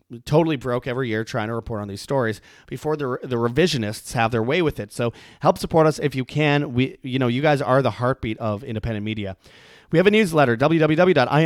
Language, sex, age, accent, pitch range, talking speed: English, male, 30-49, American, 120-155 Hz, 215 wpm